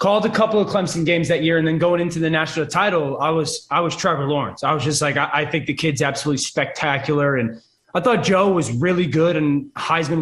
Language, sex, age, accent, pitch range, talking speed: English, male, 20-39, American, 150-185 Hz, 240 wpm